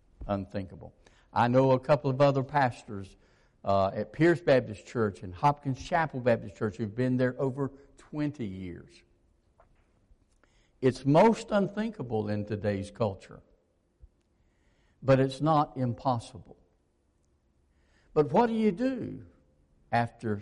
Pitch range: 100-140 Hz